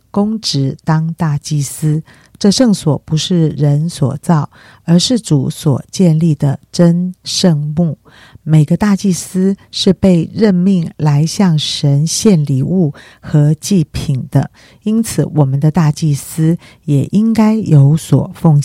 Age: 50-69